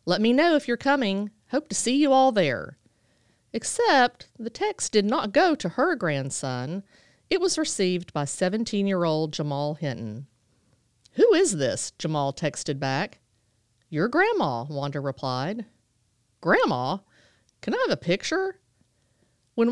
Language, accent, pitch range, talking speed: English, American, 140-210 Hz, 135 wpm